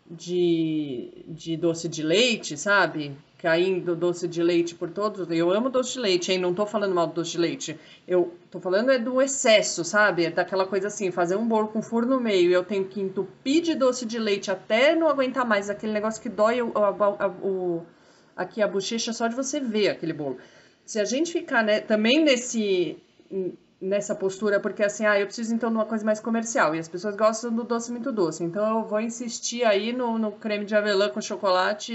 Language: Portuguese